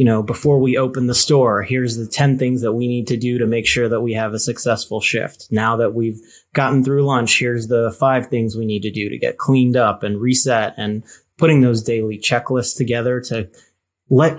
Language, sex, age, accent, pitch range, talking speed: English, male, 30-49, American, 110-135 Hz, 220 wpm